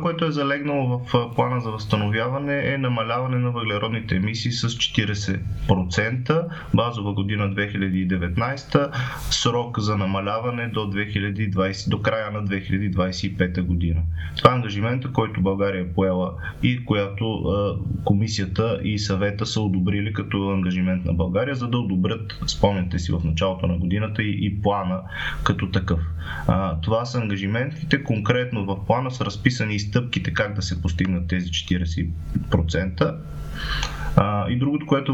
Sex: male